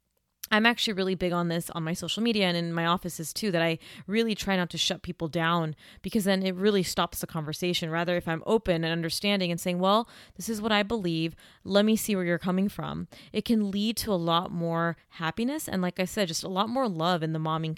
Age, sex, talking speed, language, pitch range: 20-39, female, 245 wpm, English, 170-210 Hz